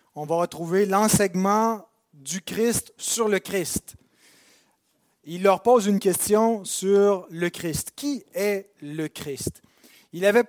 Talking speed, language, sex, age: 130 wpm, French, male, 30-49